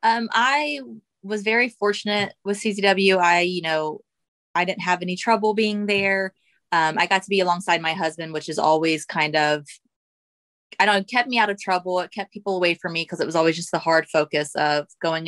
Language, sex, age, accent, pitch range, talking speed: Spanish, female, 20-39, American, 165-225 Hz, 210 wpm